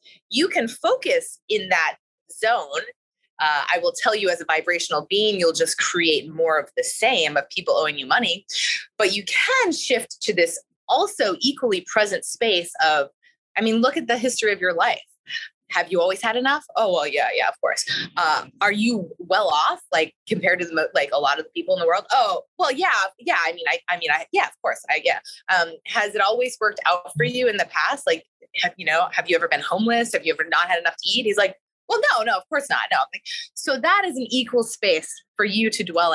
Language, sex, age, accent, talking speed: English, female, 20-39, American, 235 wpm